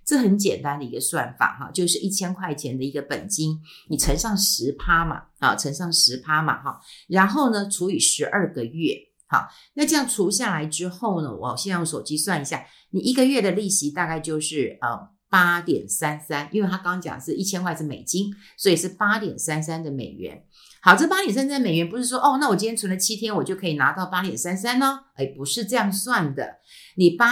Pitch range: 160-220 Hz